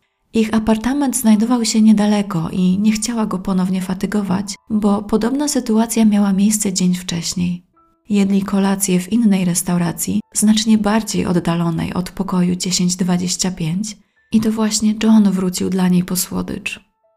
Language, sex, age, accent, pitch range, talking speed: Polish, female, 20-39, native, 180-220 Hz, 135 wpm